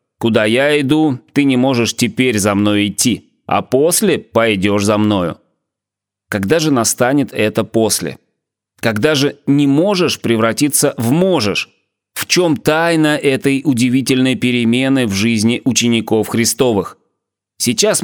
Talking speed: 125 wpm